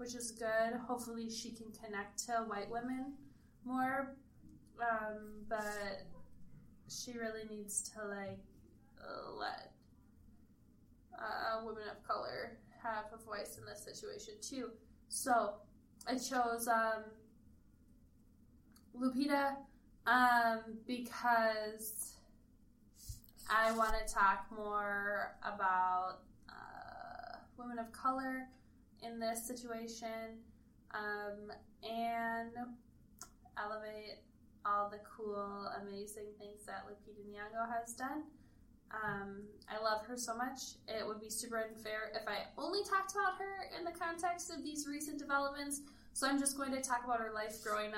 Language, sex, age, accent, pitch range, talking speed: English, female, 10-29, American, 210-245 Hz, 120 wpm